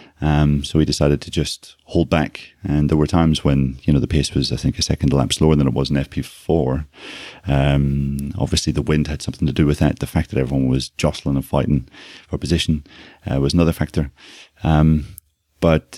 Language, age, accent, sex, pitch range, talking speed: English, 30-49, British, male, 75-80 Hz, 205 wpm